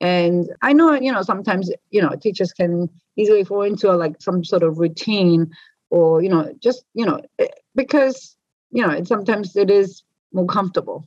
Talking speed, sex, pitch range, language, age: 175 wpm, female, 185-245 Hz, English, 30-49